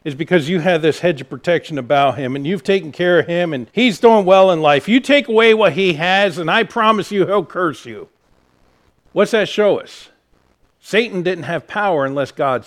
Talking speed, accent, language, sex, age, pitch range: 215 wpm, American, English, male, 50-69, 140-190 Hz